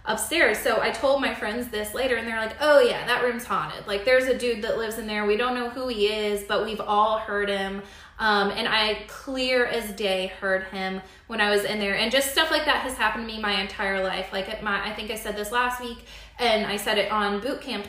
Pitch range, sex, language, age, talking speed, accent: 205-245 Hz, female, English, 20-39, 260 wpm, American